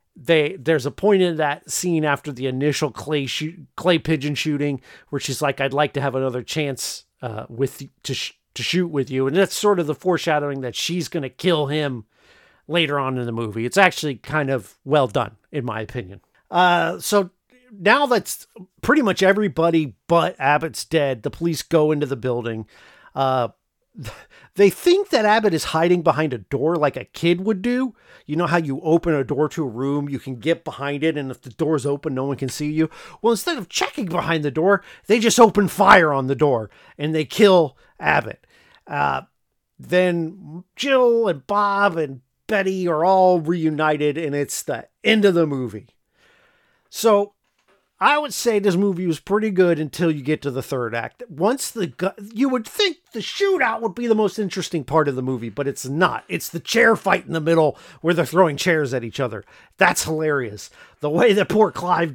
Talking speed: 200 wpm